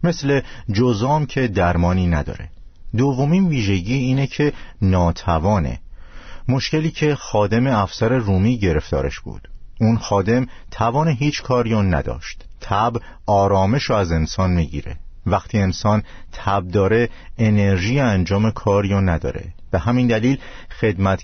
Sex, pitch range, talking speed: male, 90-125 Hz, 115 wpm